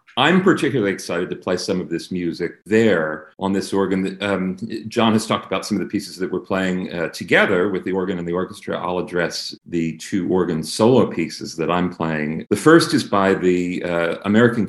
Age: 40-59